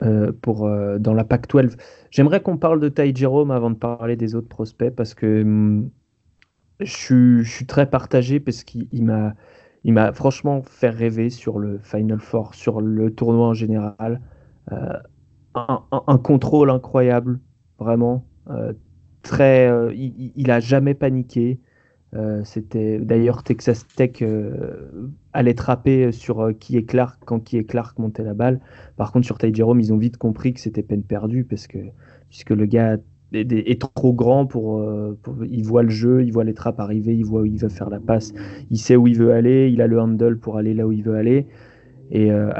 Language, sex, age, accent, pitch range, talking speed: French, male, 30-49, French, 110-130 Hz, 195 wpm